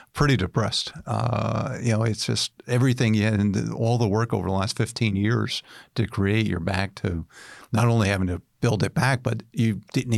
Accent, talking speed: American, 190 wpm